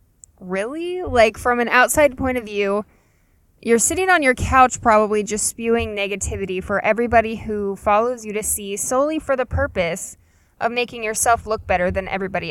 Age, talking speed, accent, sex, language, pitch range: 10-29, 170 wpm, American, female, English, 190-240 Hz